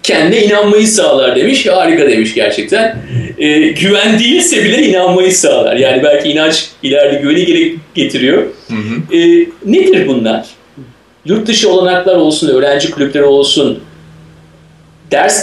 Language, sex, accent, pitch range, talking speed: Turkish, male, native, 155-220 Hz, 110 wpm